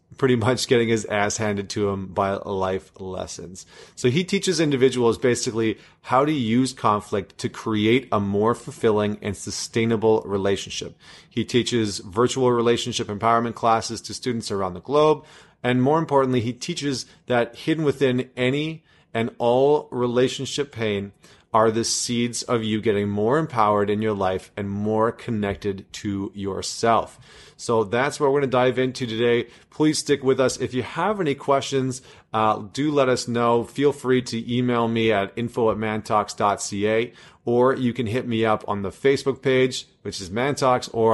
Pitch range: 105-130 Hz